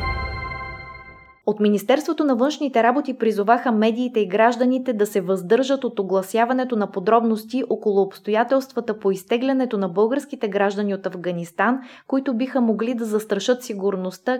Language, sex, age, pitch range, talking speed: Bulgarian, female, 20-39, 195-245 Hz, 130 wpm